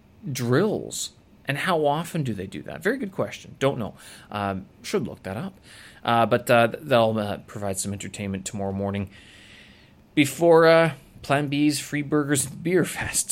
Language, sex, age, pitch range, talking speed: English, male, 30-49, 100-130 Hz, 160 wpm